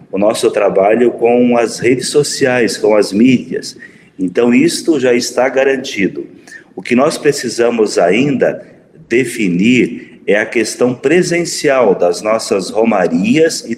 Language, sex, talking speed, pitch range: Portuguese, male, 125 wpm, 115-175 Hz